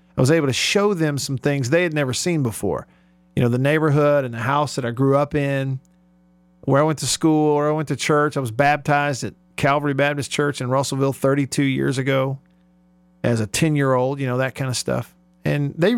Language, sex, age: English, male, 40-59